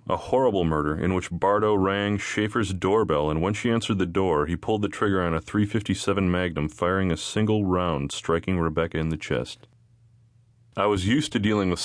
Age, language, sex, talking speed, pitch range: 30-49, English, male, 210 wpm, 80-110 Hz